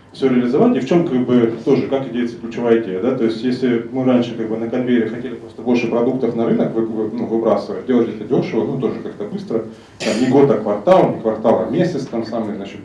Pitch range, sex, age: 110-135 Hz, male, 30-49